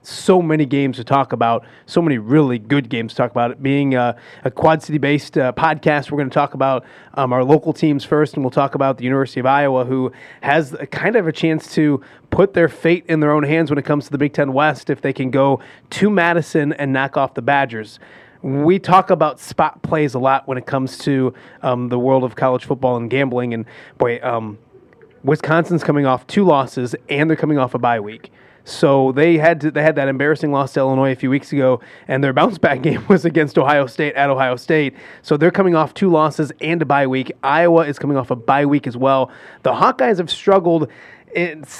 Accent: American